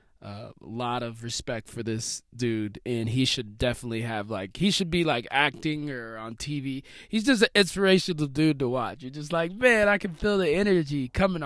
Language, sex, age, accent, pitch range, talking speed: English, male, 20-39, American, 120-180 Hz, 205 wpm